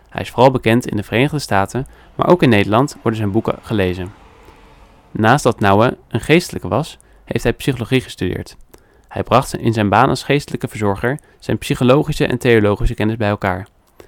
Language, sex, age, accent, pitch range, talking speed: Dutch, male, 20-39, Dutch, 100-130 Hz, 175 wpm